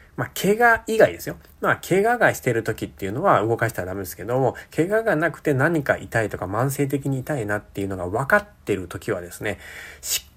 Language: Japanese